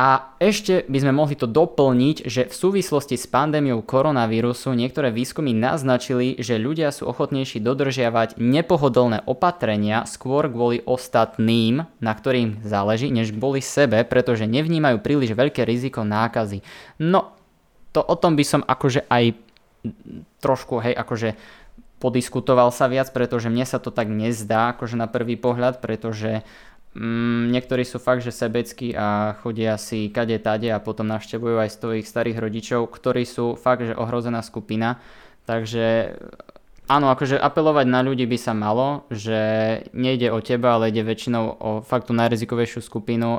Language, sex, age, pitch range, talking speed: Slovak, male, 20-39, 115-130 Hz, 150 wpm